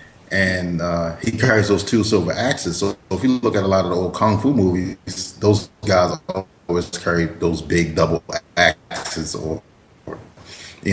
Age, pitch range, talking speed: 30-49, 85-105 Hz, 170 wpm